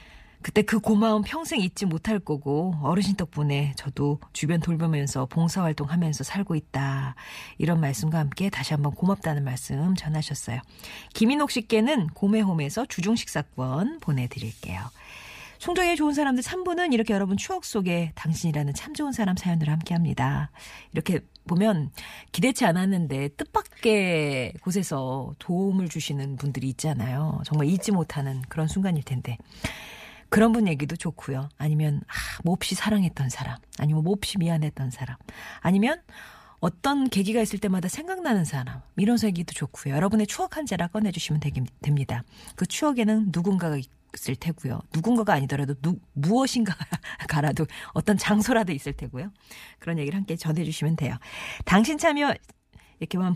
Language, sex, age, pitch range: Korean, female, 40-59, 145-205 Hz